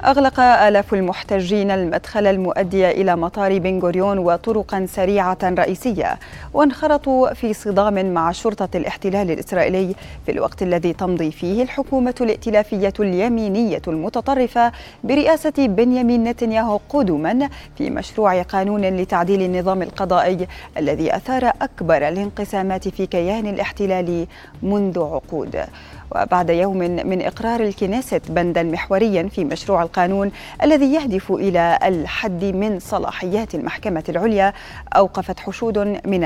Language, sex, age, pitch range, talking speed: Arabic, female, 30-49, 185-225 Hz, 115 wpm